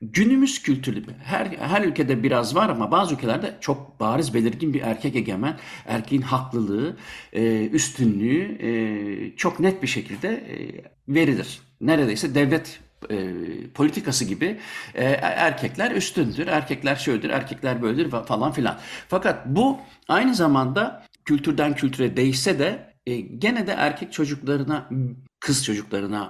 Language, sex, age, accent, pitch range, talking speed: Turkish, male, 60-79, native, 115-160 Hz, 130 wpm